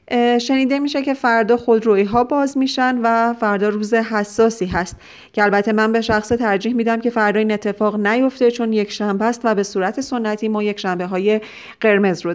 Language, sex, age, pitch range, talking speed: Persian, female, 40-59, 195-235 Hz, 190 wpm